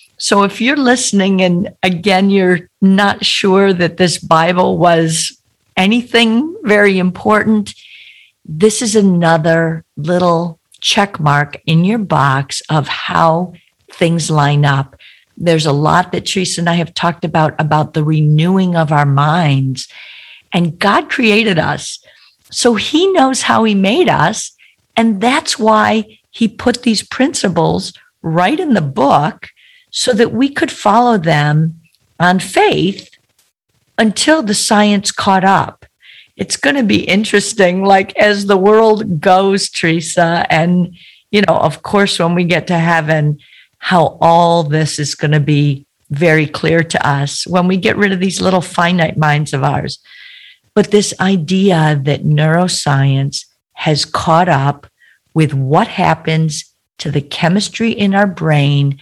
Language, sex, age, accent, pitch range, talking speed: English, female, 50-69, American, 155-205 Hz, 145 wpm